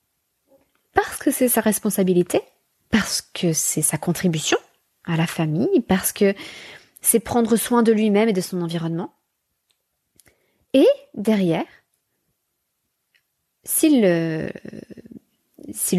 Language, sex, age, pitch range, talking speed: French, female, 20-39, 175-235 Hz, 100 wpm